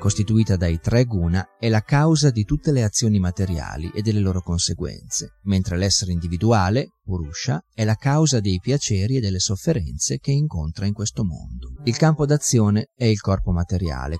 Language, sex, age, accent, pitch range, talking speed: Italian, male, 30-49, native, 90-125 Hz, 170 wpm